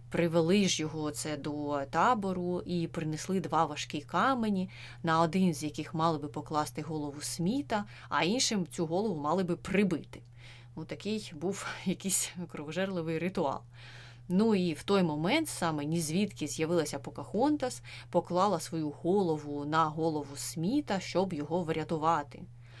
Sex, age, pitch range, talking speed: female, 20-39, 150-185 Hz, 135 wpm